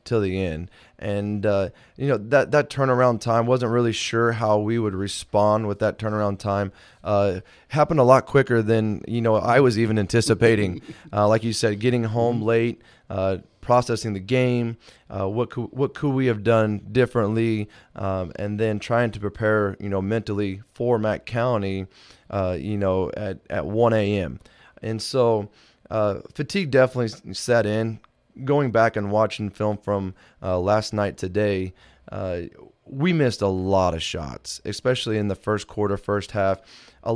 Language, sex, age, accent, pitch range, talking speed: English, male, 20-39, American, 100-120 Hz, 170 wpm